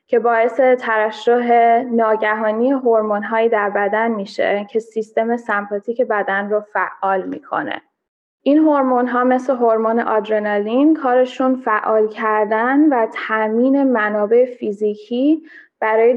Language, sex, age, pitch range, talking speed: Persian, female, 10-29, 215-250 Hz, 110 wpm